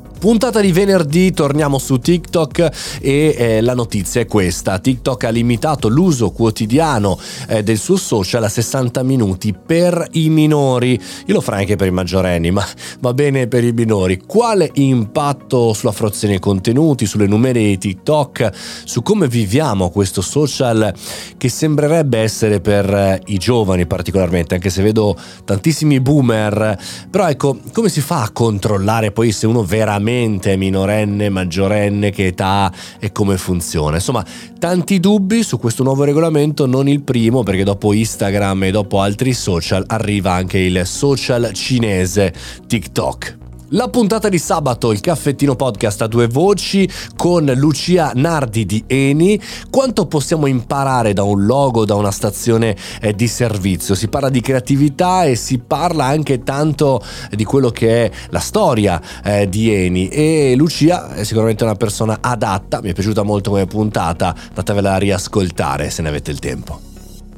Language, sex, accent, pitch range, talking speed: Italian, male, native, 100-145 Hz, 155 wpm